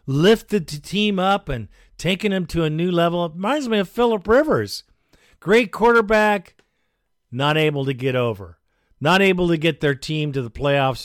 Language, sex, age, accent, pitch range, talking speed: English, male, 50-69, American, 130-190 Hz, 180 wpm